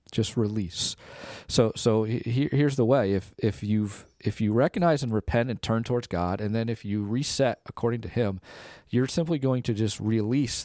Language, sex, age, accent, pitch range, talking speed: English, male, 40-59, American, 105-135 Hz, 195 wpm